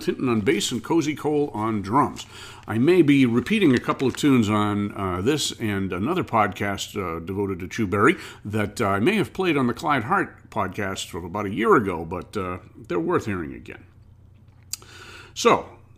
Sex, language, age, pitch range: male, English, 50-69, 100-130 Hz